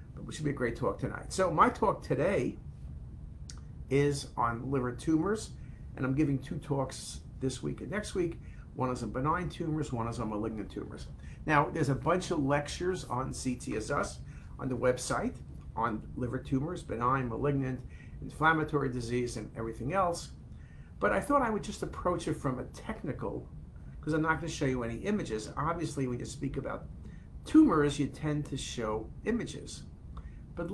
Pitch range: 115-155 Hz